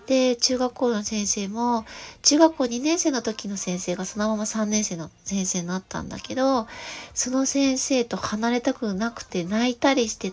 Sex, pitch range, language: female, 205-270 Hz, Japanese